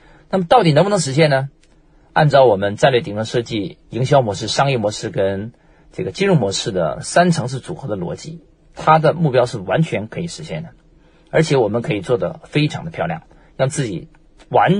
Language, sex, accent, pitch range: Chinese, male, native, 125-165 Hz